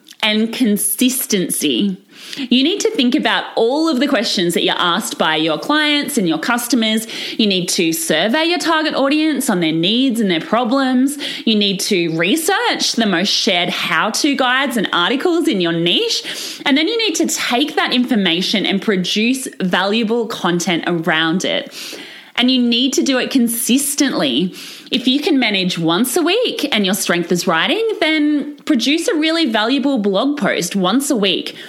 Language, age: English, 20-39